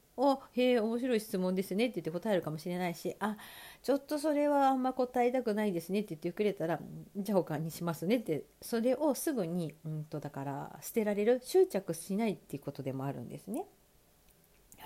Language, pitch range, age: Japanese, 165-255 Hz, 40-59